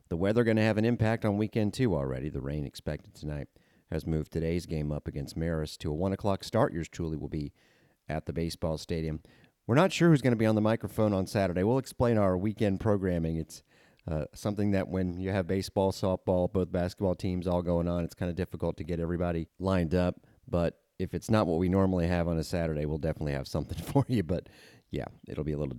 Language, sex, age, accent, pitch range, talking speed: English, male, 40-59, American, 75-105 Hz, 230 wpm